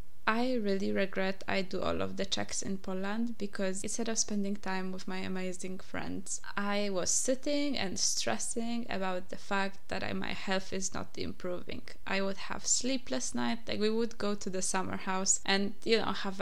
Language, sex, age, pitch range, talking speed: English, female, 20-39, 185-205 Hz, 185 wpm